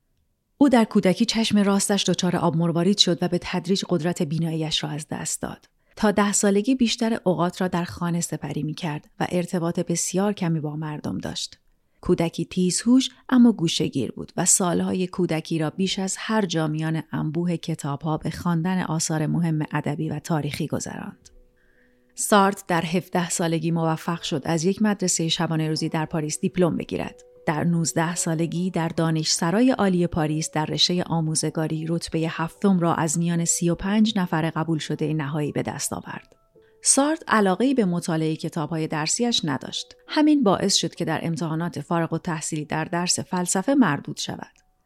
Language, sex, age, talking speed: Persian, female, 30-49, 155 wpm